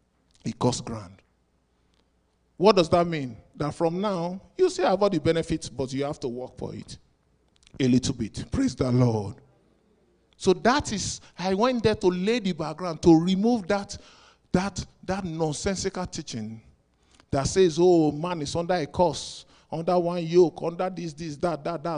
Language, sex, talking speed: English, male, 170 wpm